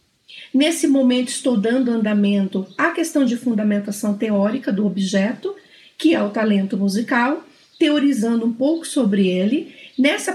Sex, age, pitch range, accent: female, 40-59, 225-310 Hz, Brazilian